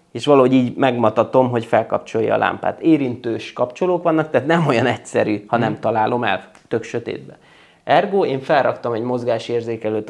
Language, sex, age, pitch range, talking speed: Hungarian, male, 20-39, 110-135 Hz, 155 wpm